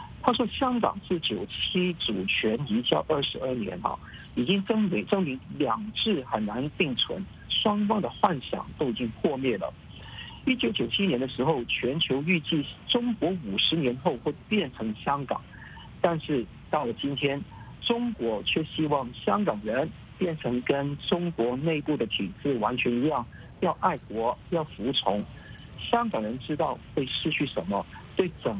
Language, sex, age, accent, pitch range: English, male, 50-69, Chinese, 125-185 Hz